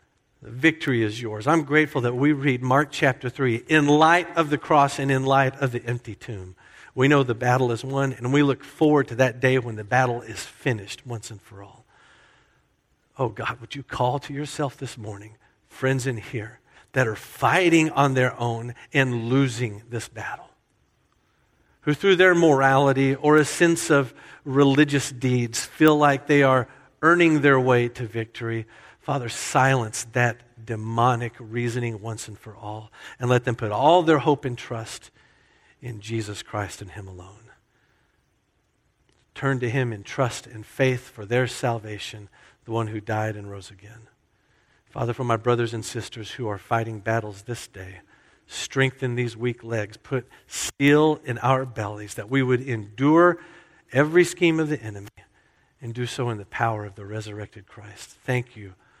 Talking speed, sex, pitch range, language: 170 wpm, male, 110-135 Hz, English